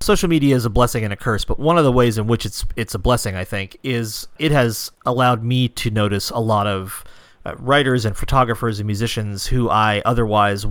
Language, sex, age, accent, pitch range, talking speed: English, male, 30-49, American, 100-120 Hz, 225 wpm